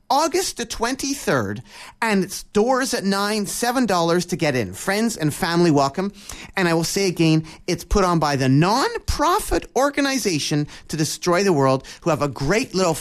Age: 30-49